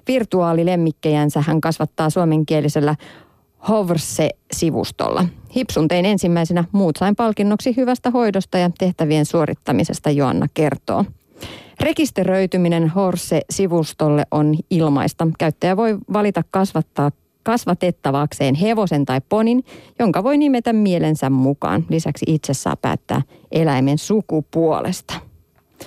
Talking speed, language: 95 wpm, Finnish